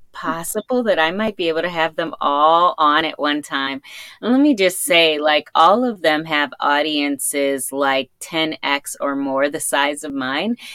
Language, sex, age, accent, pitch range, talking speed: English, female, 20-39, American, 140-180 Hz, 180 wpm